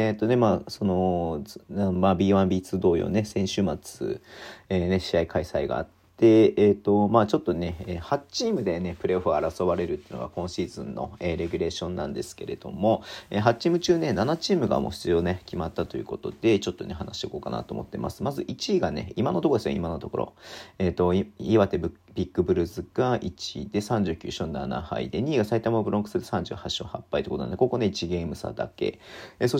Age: 40-59